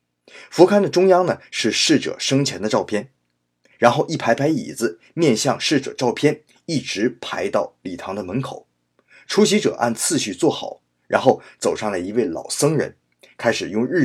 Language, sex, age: Chinese, male, 30-49